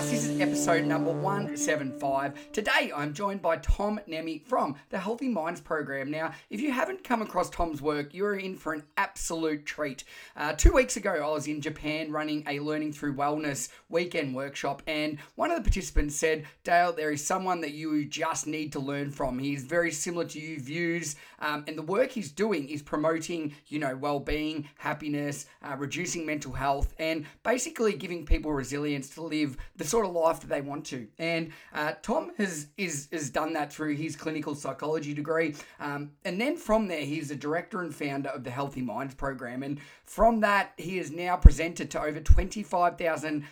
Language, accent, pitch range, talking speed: English, Australian, 145-175 Hz, 190 wpm